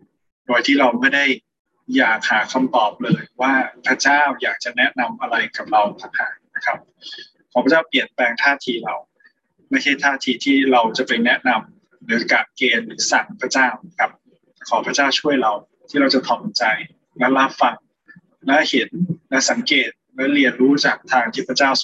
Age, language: 20-39, Thai